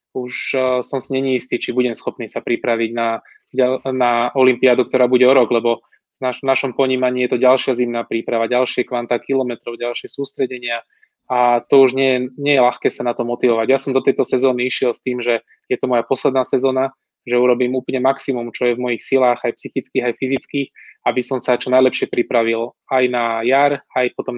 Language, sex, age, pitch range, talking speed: Slovak, male, 20-39, 120-135 Hz, 195 wpm